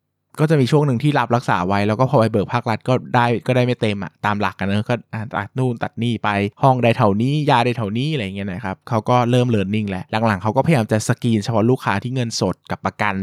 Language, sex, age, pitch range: Thai, male, 20-39, 100-125 Hz